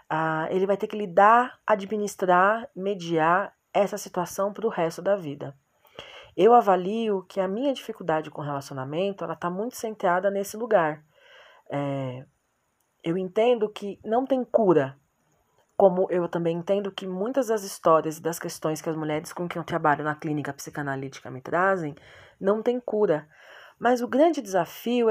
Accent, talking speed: Brazilian, 155 wpm